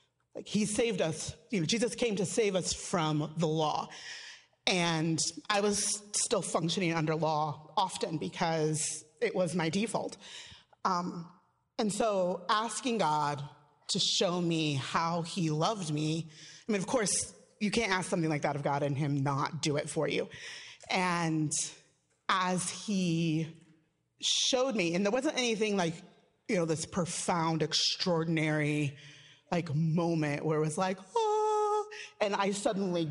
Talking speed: 150 wpm